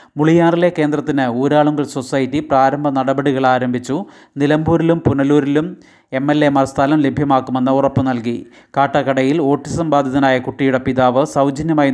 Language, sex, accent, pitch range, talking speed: Malayalam, male, native, 130-145 Hz, 115 wpm